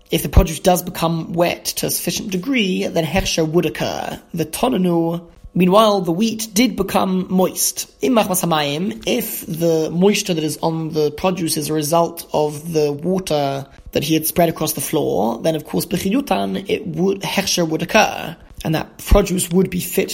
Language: English